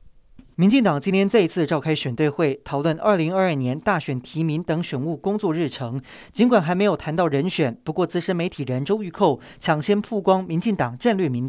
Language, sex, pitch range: Chinese, male, 145-190 Hz